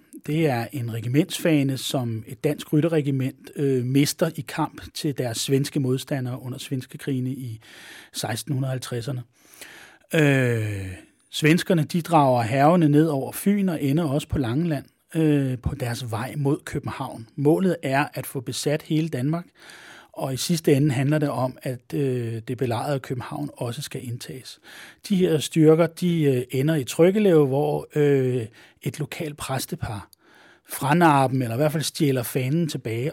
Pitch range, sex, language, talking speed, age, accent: 130-155 Hz, male, Danish, 150 wpm, 30-49, native